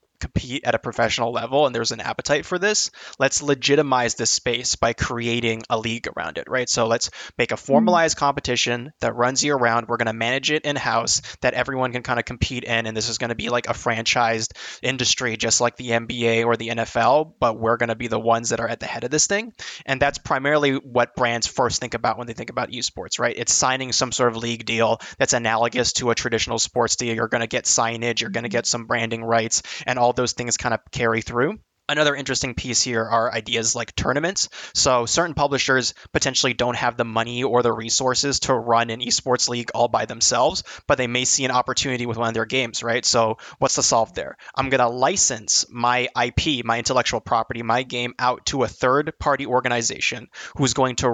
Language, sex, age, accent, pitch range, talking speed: English, male, 20-39, American, 115-130 Hz, 220 wpm